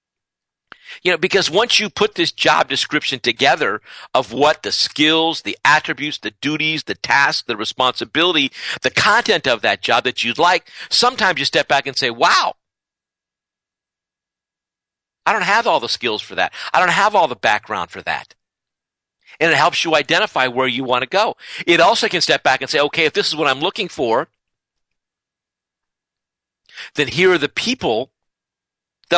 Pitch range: 145-200 Hz